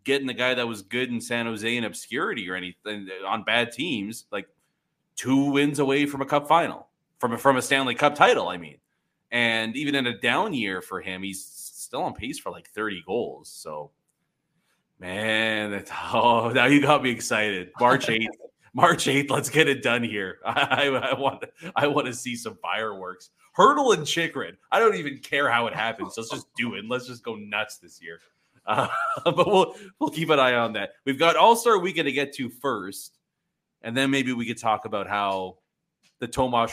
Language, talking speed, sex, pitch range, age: English, 200 wpm, male, 105-135 Hz, 30-49